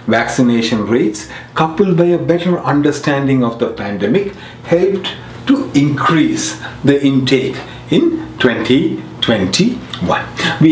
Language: English